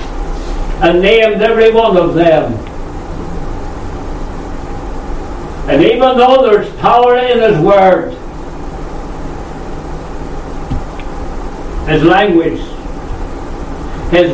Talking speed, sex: 70 wpm, male